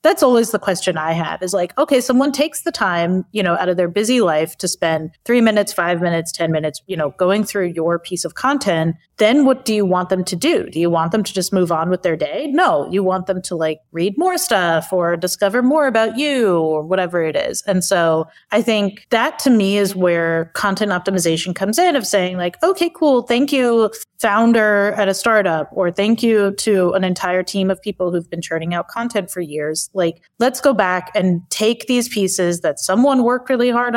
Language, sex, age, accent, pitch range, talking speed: English, female, 30-49, American, 170-230 Hz, 225 wpm